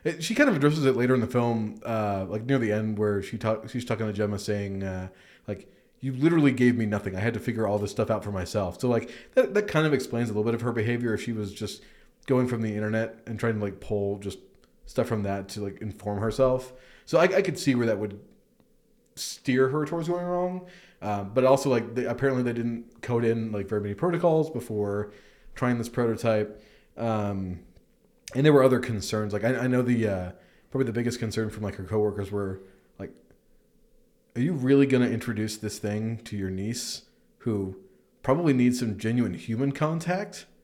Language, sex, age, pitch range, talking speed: English, male, 20-39, 105-135 Hz, 215 wpm